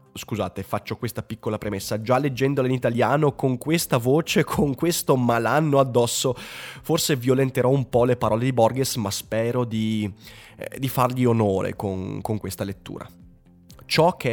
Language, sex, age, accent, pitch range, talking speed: Italian, male, 20-39, native, 105-140 Hz, 150 wpm